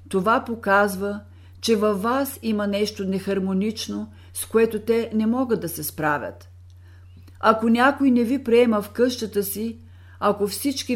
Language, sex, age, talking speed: Bulgarian, female, 50-69, 140 wpm